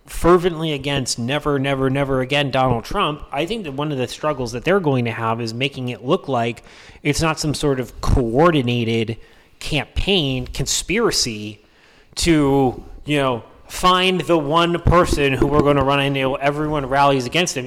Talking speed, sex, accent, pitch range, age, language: 170 wpm, male, American, 125-175 Hz, 30-49, English